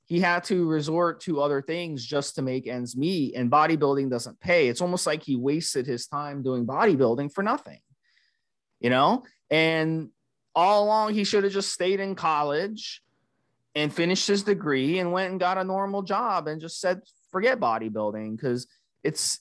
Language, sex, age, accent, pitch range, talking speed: English, male, 30-49, American, 140-190 Hz, 175 wpm